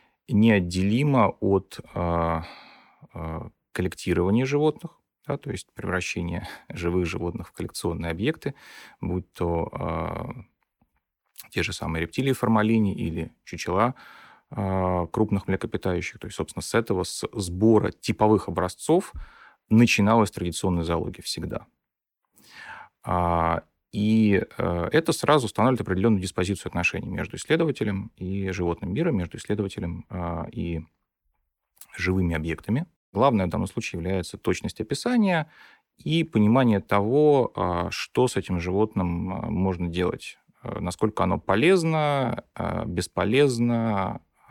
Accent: native